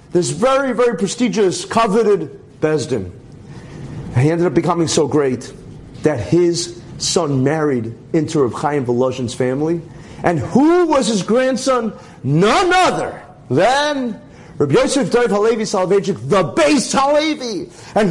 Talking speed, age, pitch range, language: 125 wpm, 40-59, 135-220 Hz, English